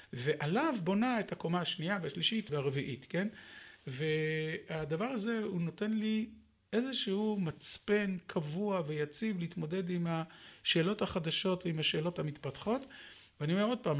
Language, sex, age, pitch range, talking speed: Hebrew, male, 40-59, 155-210 Hz, 120 wpm